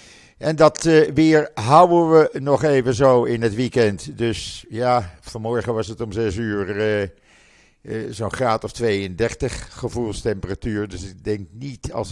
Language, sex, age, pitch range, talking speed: Dutch, male, 50-69, 105-135 Hz, 160 wpm